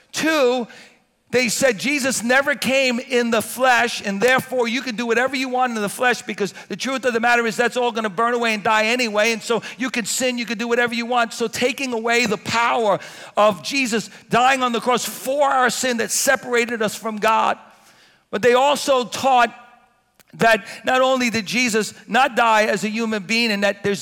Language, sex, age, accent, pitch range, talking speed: English, male, 50-69, American, 225-260 Hz, 210 wpm